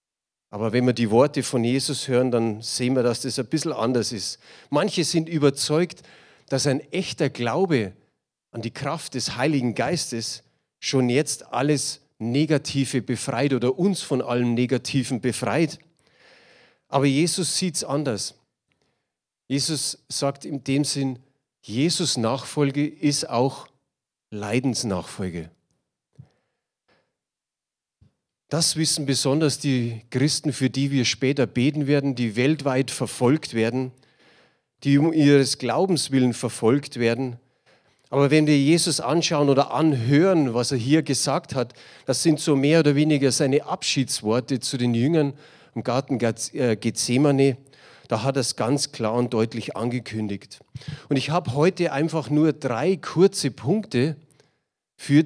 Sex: male